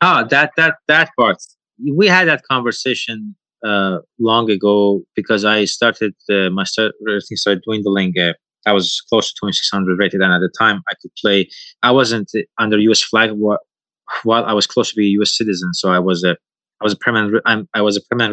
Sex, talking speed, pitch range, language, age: male, 205 wpm, 95-120 Hz, English, 20-39